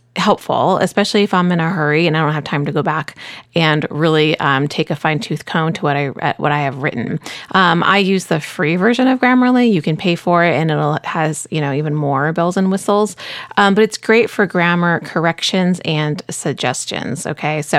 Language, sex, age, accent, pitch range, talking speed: English, female, 30-49, American, 155-195 Hz, 215 wpm